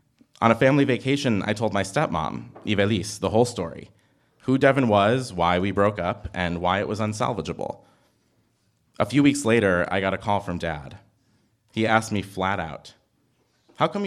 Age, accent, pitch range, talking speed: 30-49, American, 95-125 Hz, 175 wpm